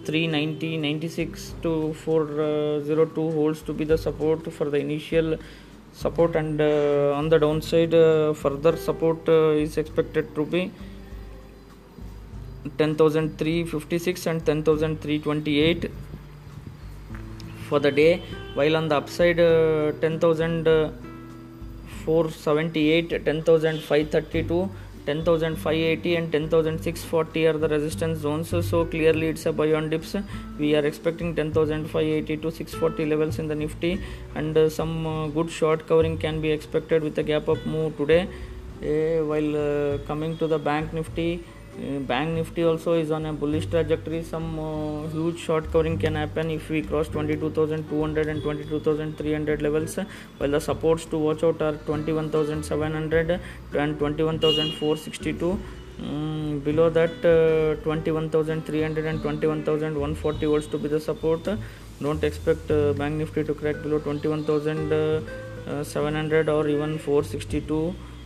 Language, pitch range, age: English, 150-160 Hz, 20-39